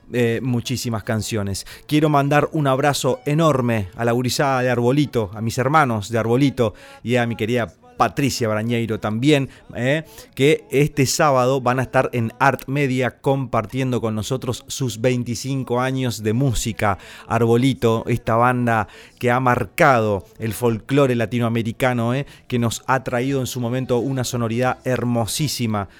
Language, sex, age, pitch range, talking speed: Spanish, male, 30-49, 115-135 Hz, 145 wpm